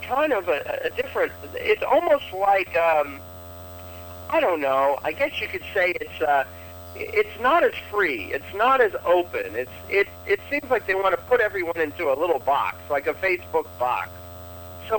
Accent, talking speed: American, 185 wpm